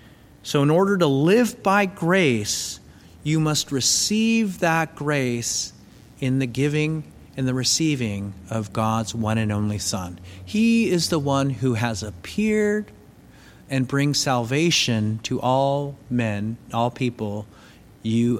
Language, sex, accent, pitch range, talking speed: English, male, American, 120-180 Hz, 130 wpm